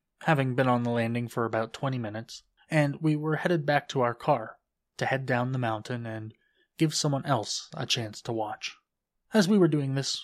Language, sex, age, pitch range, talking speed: English, male, 20-39, 115-145 Hz, 205 wpm